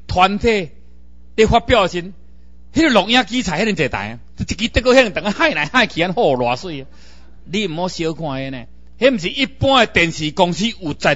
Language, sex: Chinese, male